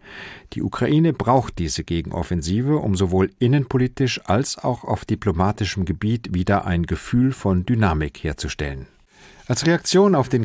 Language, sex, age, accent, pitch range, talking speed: German, male, 50-69, German, 95-130 Hz, 130 wpm